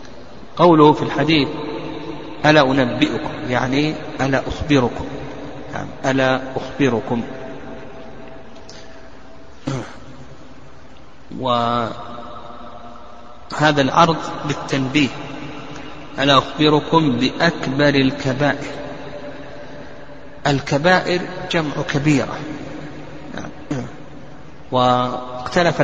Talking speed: 50 wpm